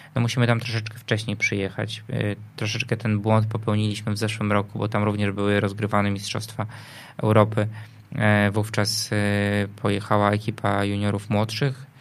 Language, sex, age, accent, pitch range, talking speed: Polish, male, 20-39, native, 110-130 Hz, 125 wpm